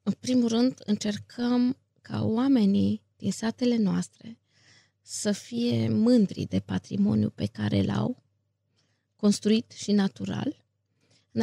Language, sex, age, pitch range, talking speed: Romanian, female, 20-39, 140-220 Hz, 110 wpm